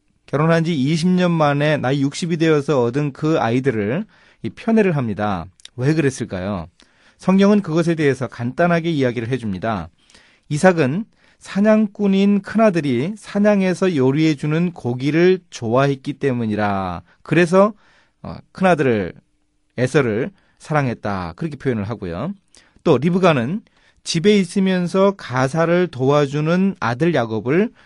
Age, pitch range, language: 30-49, 120-185 Hz, Korean